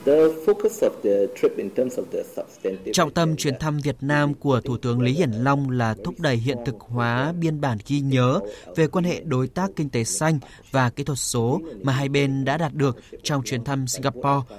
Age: 20-39